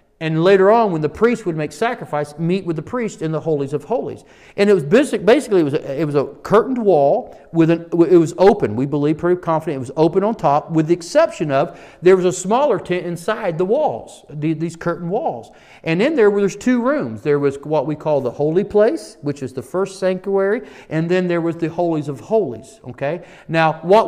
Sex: male